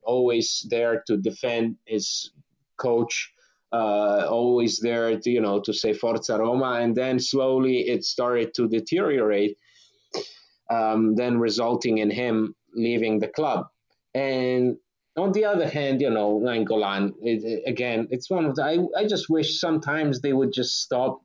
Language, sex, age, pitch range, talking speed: English, male, 30-49, 115-130 Hz, 150 wpm